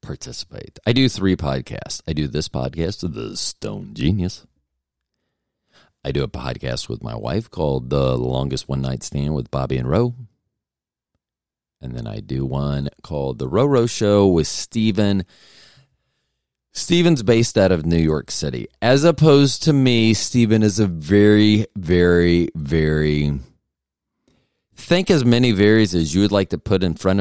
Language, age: English, 40-59